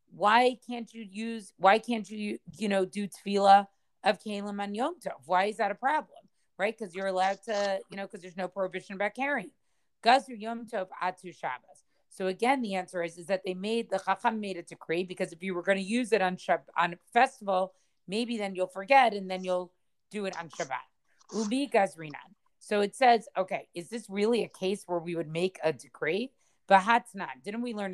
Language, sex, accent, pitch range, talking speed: English, female, American, 180-225 Hz, 205 wpm